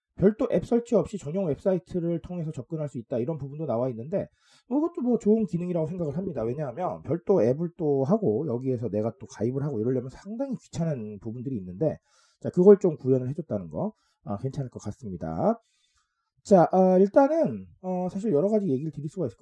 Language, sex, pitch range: Korean, male, 125-195 Hz